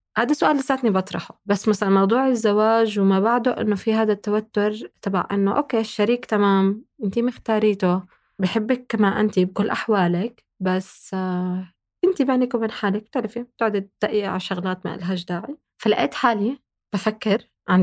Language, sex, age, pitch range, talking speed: Arabic, female, 20-39, 180-220 Hz, 140 wpm